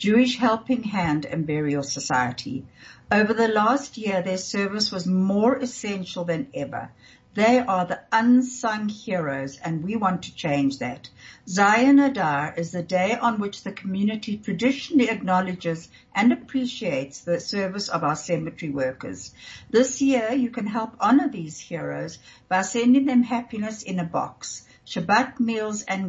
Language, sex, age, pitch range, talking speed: English, female, 60-79, 165-225 Hz, 150 wpm